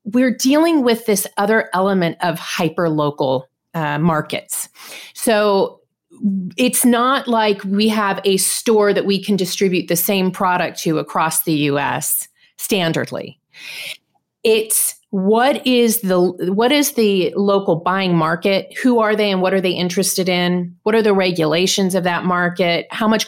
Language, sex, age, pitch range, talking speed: English, female, 30-49, 180-225 Hz, 155 wpm